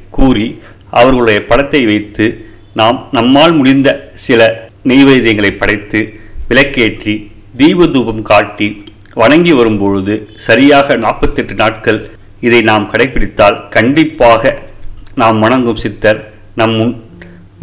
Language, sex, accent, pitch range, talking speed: Tamil, male, native, 105-120 Hz, 95 wpm